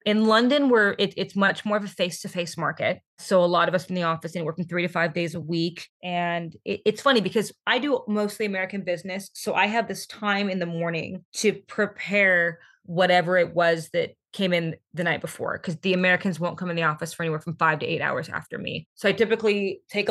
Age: 20-39